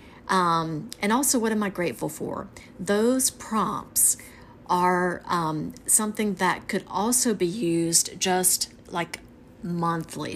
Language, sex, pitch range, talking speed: English, female, 170-200 Hz, 120 wpm